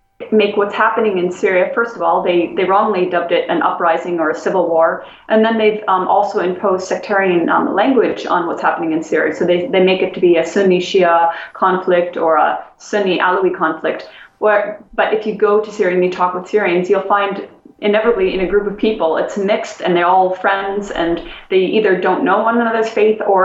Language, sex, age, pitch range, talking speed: English, female, 20-39, 180-215 Hz, 210 wpm